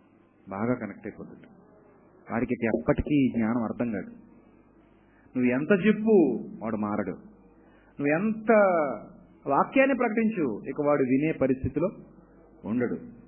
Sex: male